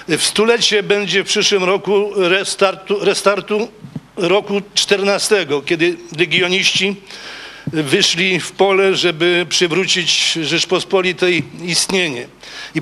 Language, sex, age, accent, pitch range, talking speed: Polish, male, 50-69, native, 165-190 Hz, 95 wpm